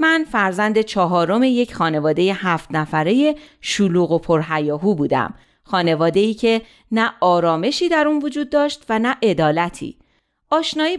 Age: 40-59